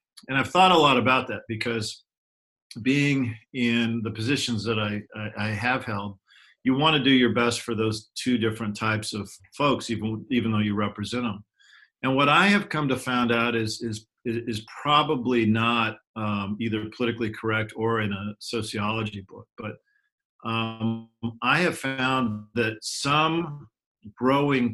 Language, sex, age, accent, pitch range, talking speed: English, male, 40-59, American, 110-130 Hz, 165 wpm